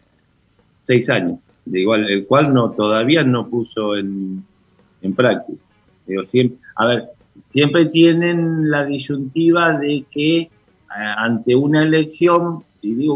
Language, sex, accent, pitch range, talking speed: Spanish, male, Argentinian, 105-130 Hz, 130 wpm